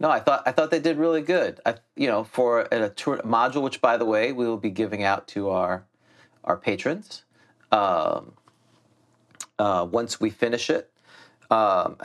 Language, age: English, 40-59